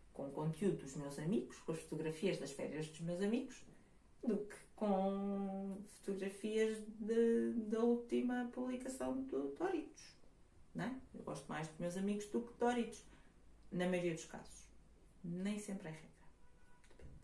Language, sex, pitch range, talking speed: Portuguese, female, 180-235 Hz, 140 wpm